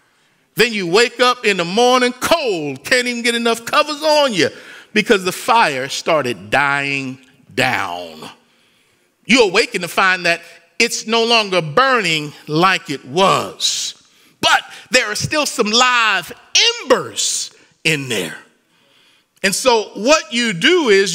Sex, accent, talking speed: male, American, 135 wpm